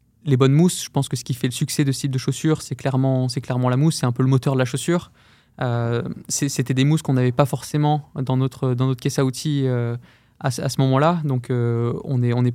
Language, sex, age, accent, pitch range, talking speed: French, male, 20-39, French, 130-145 Hz, 275 wpm